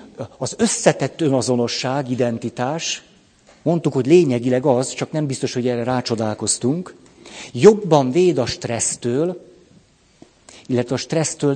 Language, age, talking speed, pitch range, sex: Hungarian, 50-69, 110 wpm, 115-150 Hz, male